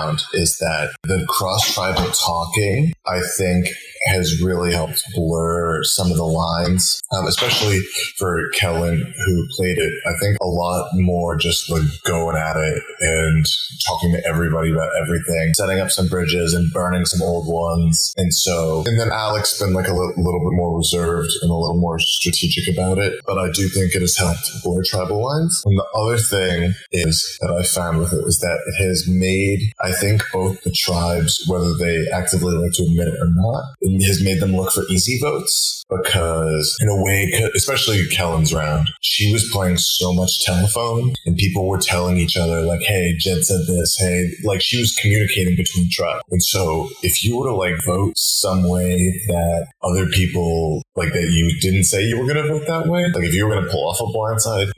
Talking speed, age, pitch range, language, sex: 195 wpm, 30-49, 85-95 Hz, English, male